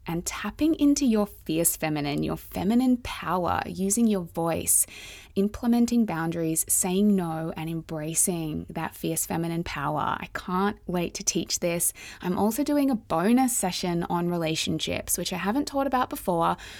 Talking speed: 150 wpm